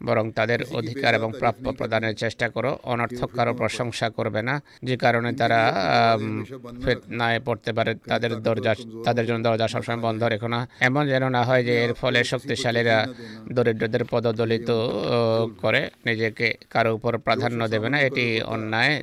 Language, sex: Bengali, male